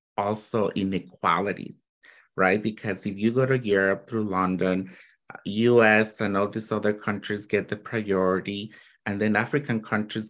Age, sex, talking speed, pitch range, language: 50-69, male, 140 wpm, 95-110 Hz, English